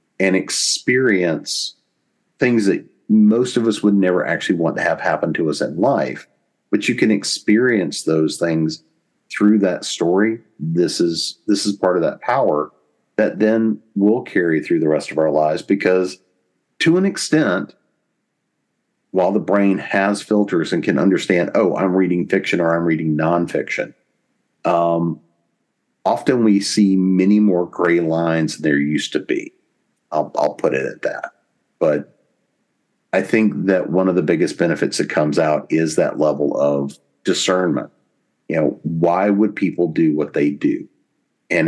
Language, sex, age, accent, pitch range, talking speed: English, male, 50-69, American, 80-100 Hz, 160 wpm